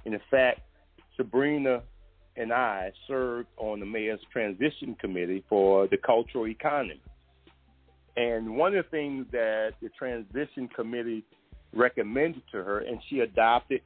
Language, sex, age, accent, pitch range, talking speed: English, male, 50-69, American, 95-140 Hz, 130 wpm